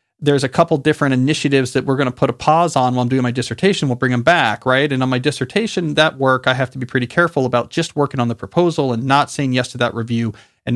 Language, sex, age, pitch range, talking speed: English, male, 40-59, 120-150 Hz, 275 wpm